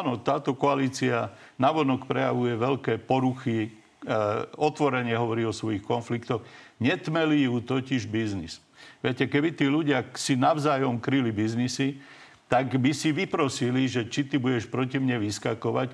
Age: 50-69